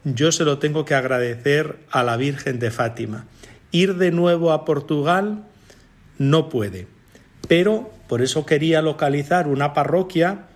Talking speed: 140 wpm